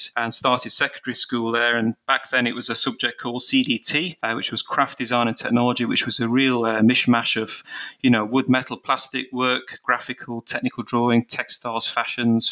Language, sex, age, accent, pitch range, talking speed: English, male, 30-49, British, 115-130 Hz, 185 wpm